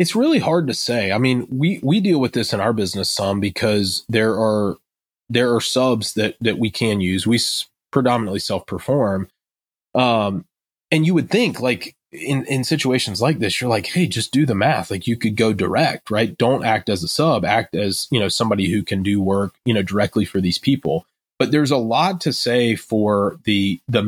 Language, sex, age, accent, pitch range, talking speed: English, male, 30-49, American, 100-130 Hz, 210 wpm